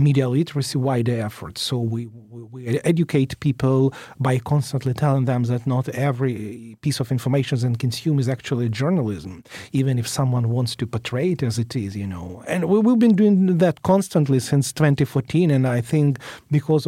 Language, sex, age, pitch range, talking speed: English, male, 40-59, 125-150 Hz, 175 wpm